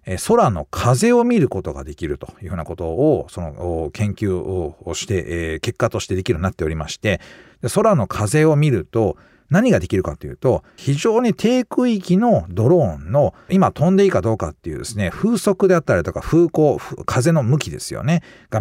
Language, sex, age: Japanese, male, 50-69